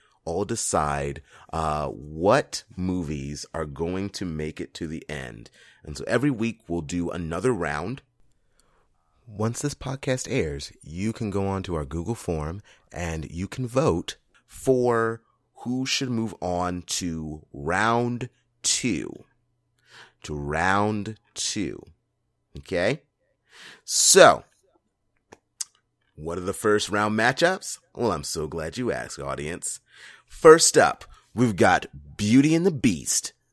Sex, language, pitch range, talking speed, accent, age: male, English, 85-125 Hz, 125 wpm, American, 30-49